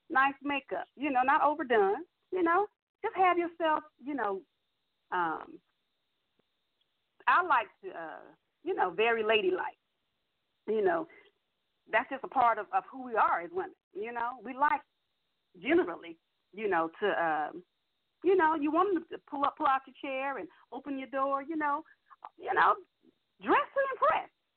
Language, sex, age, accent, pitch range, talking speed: English, female, 40-59, American, 225-365 Hz, 165 wpm